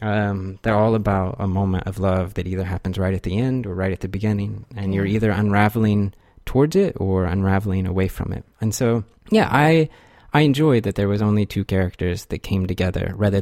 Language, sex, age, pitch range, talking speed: English, male, 30-49, 95-110 Hz, 210 wpm